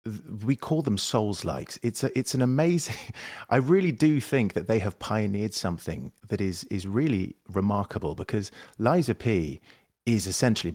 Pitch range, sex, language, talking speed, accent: 95-120 Hz, male, English, 160 wpm, British